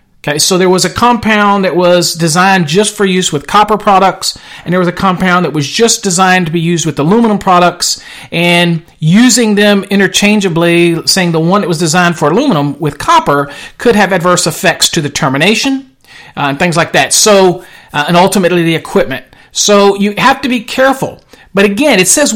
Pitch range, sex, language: 170-220 Hz, male, English